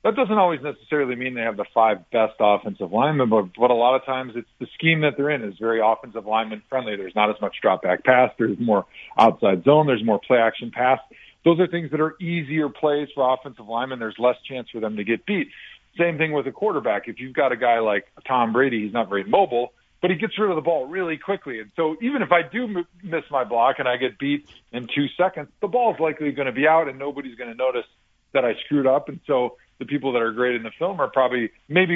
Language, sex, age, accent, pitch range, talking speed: English, male, 40-59, American, 120-150 Hz, 250 wpm